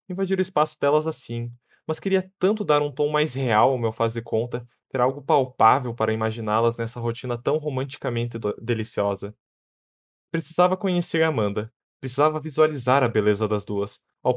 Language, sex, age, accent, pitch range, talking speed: Portuguese, male, 20-39, Brazilian, 115-145 Hz, 160 wpm